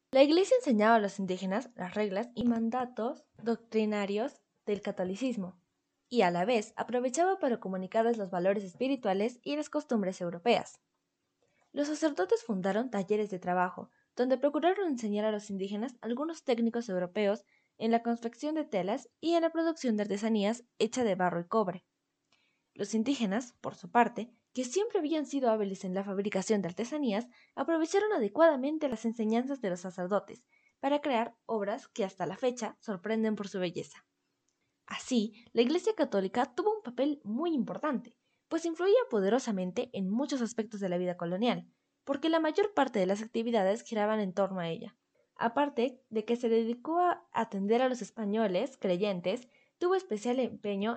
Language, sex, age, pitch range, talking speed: Spanish, female, 20-39, 205-270 Hz, 160 wpm